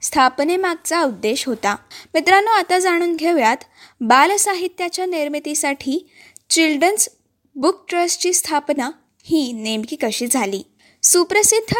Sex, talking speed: female, 95 wpm